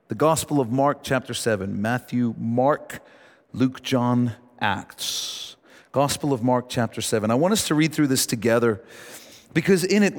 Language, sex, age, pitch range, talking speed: English, male, 50-69, 130-180 Hz, 160 wpm